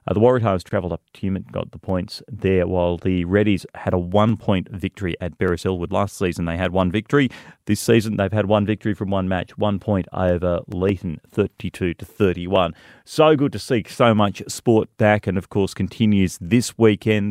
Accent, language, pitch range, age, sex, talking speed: Australian, English, 90-110 Hz, 30-49, male, 190 wpm